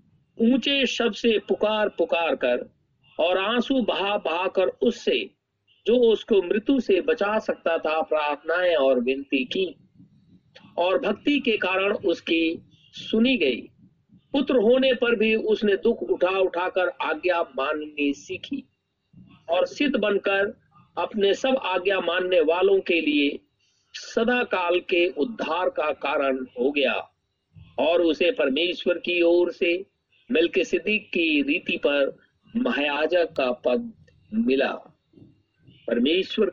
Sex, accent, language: male, native, Hindi